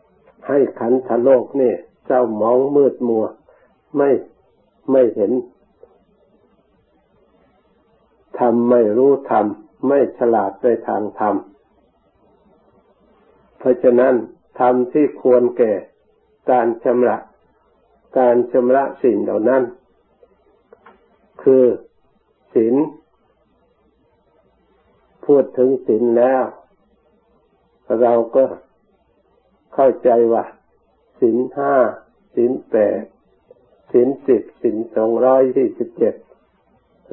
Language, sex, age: Thai, male, 60-79